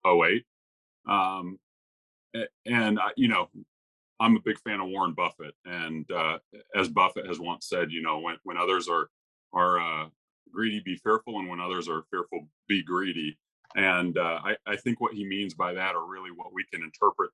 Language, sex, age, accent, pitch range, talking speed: English, male, 30-49, American, 90-110 Hz, 180 wpm